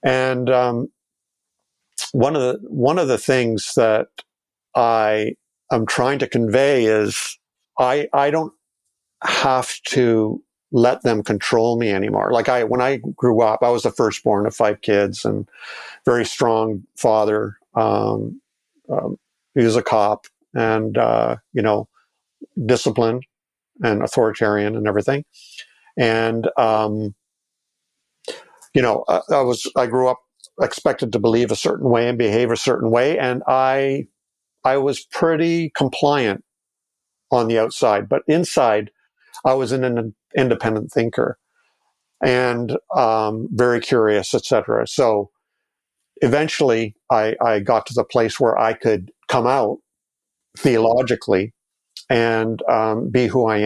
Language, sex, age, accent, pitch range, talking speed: English, male, 50-69, American, 110-130 Hz, 135 wpm